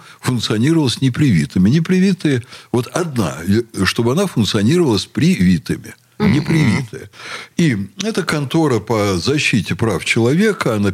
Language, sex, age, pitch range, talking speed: Russian, male, 60-79, 105-160 Hz, 100 wpm